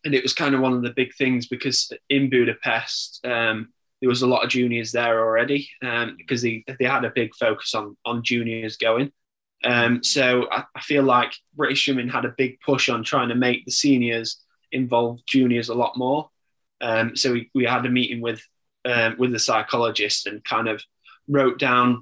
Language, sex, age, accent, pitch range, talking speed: English, male, 10-29, British, 120-130 Hz, 200 wpm